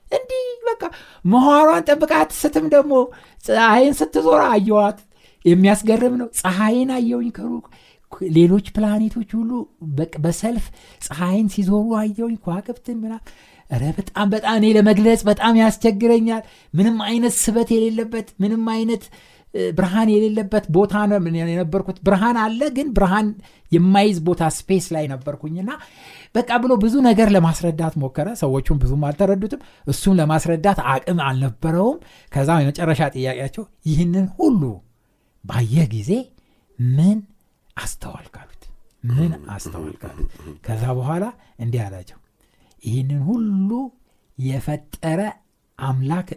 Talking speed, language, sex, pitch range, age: 100 wpm, Amharic, male, 150-225 Hz, 60-79